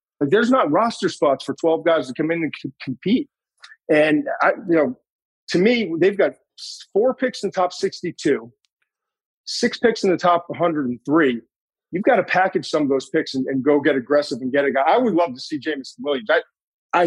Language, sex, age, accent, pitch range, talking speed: English, male, 40-59, American, 140-180 Hz, 210 wpm